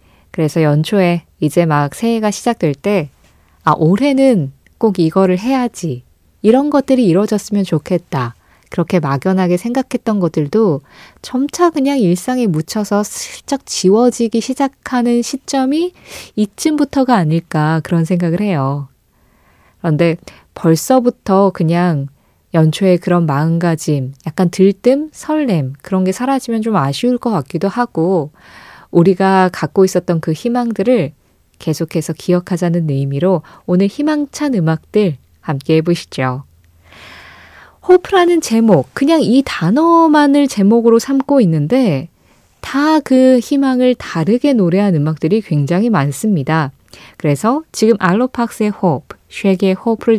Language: Korean